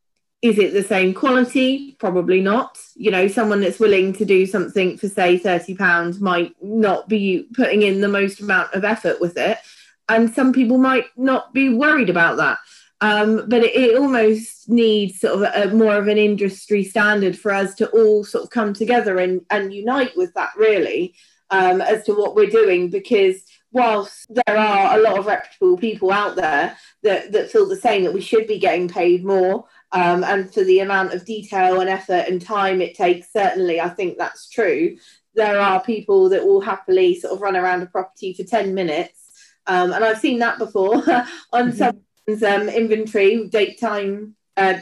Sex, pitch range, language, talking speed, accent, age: female, 190-250 Hz, English, 190 wpm, British, 30-49